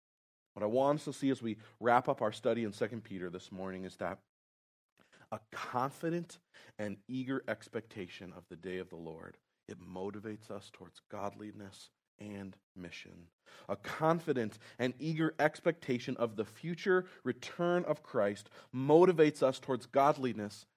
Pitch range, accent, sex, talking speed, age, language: 90-125 Hz, American, male, 150 wpm, 30-49, English